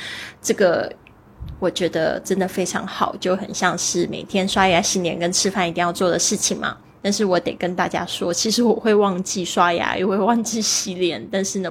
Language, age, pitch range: Chinese, 20-39, 180-215 Hz